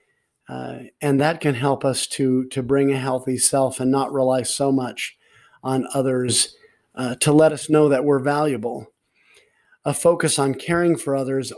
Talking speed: 170 wpm